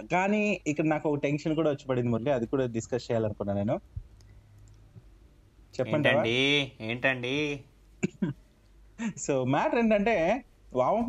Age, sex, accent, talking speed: 20-39, male, native, 90 wpm